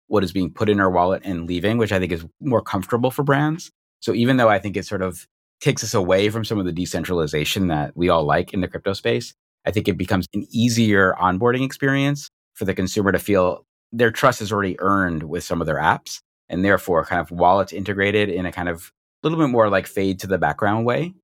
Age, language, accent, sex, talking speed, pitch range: 30-49, English, American, male, 235 wpm, 90-115 Hz